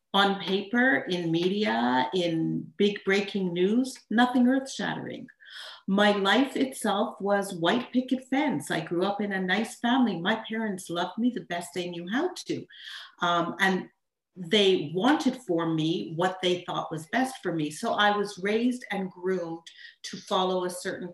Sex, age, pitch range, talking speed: female, 40-59, 175-225 Hz, 165 wpm